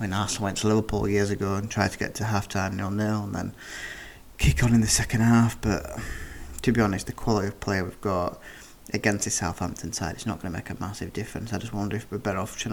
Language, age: English, 20-39